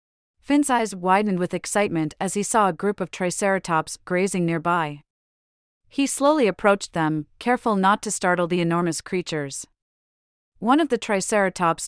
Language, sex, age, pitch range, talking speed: English, female, 30-49, 160-210 Hz, 145 wpm